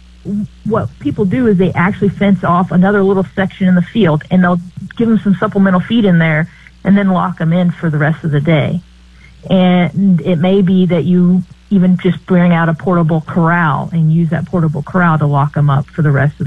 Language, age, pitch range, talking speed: English, 40-59, 155-185 Hz, 220 wpm